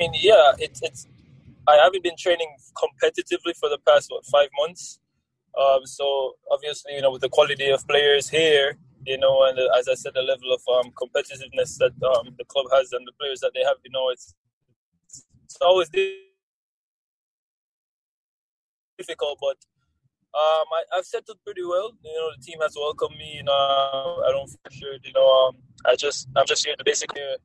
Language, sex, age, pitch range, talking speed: English, male, 20-39, 135-185 Hz, 180 wpm